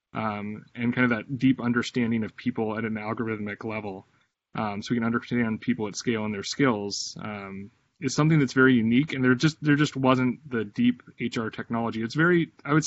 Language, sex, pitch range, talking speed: English, male, 105-125 Hz, 205 wpm